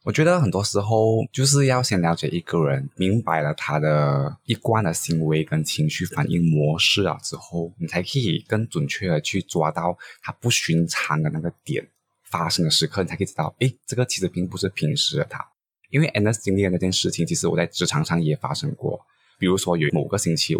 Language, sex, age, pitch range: Chinese, male, 20-39, 80-115 Hz